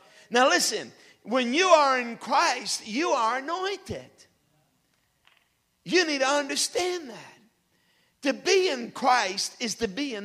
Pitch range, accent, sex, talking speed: 220-295 Hz, American, male, 135 wpm